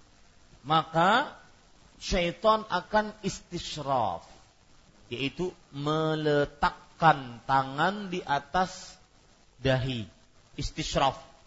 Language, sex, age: Malay, male, 40-59